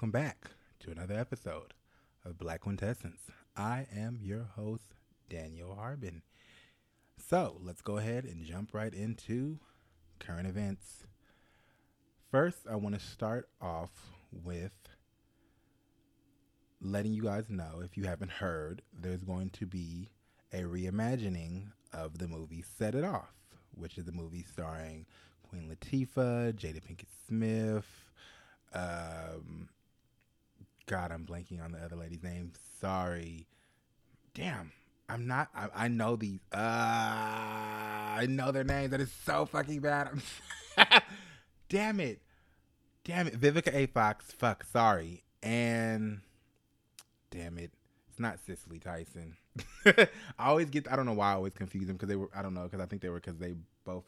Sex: male